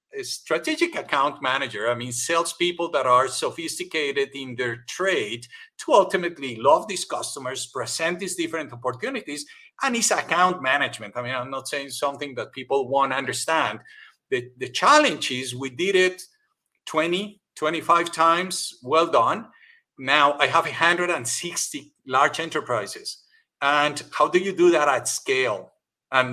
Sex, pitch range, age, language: male, 130-185 Hz, 50-69, English